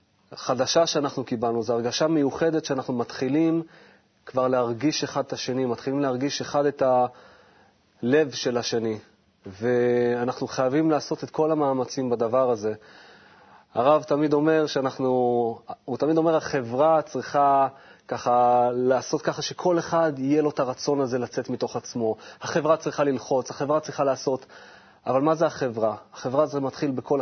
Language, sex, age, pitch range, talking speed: Hebrew, male, 30-49, 125-150 Hz, 140 wpm